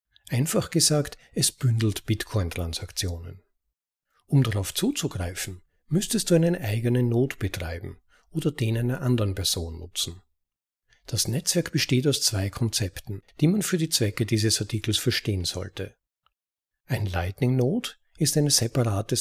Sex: male